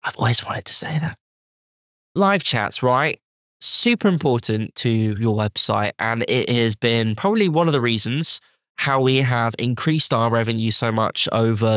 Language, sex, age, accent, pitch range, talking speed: English, male, 10-29, British, 110-130 Hz, 165 wpm